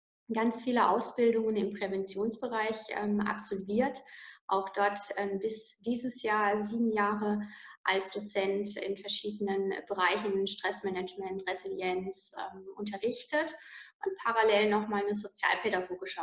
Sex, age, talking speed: female, 20-39, 105 wpm